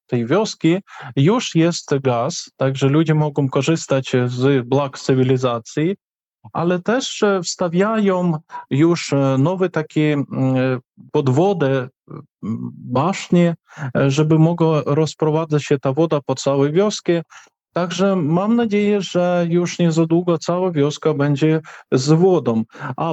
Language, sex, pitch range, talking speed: Polish, male, 135-175 Hz, 110 wpm